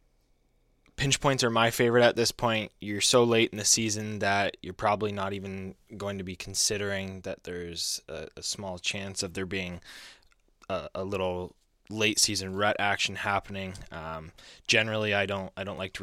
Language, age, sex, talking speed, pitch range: English, 20-39, male, 180 wpm, 95-105 Hz